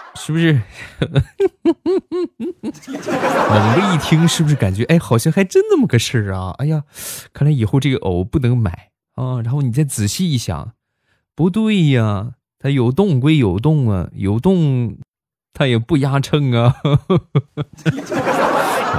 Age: 20-39